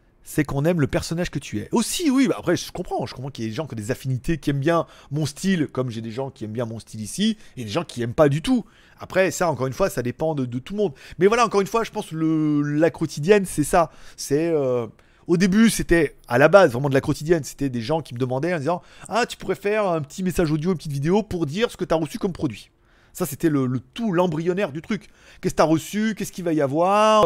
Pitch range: 130-180 Hz